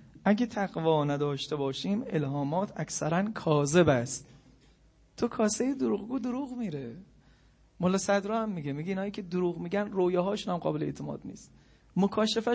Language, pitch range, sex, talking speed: Persian, 145-195 Hz, male, 145 wpm